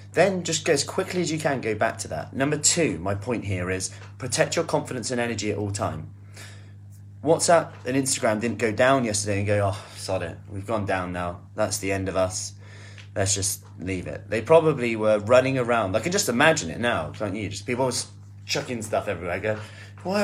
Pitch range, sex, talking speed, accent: 100-125 Hz, male, 215 wpm, British